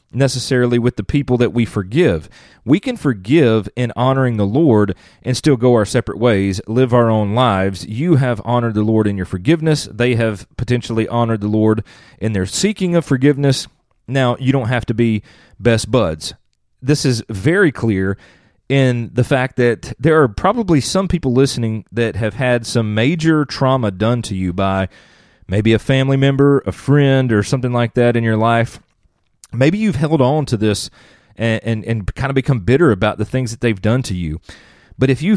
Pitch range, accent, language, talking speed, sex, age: 105-135 Hz, American, English, 190 wpm, male, 30-49